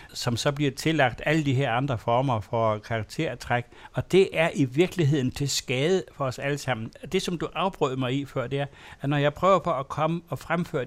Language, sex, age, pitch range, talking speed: Danish, male, 60-79, 130-165 Hz, 225 wpm